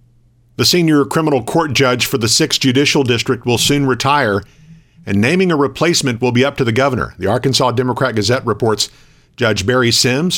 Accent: American